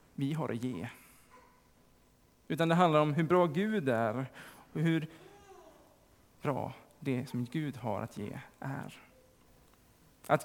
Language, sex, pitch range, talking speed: Swedish, male, 130-170 Hz, 130 wpm